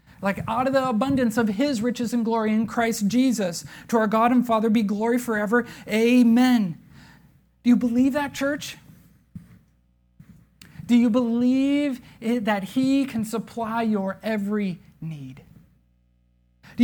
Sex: male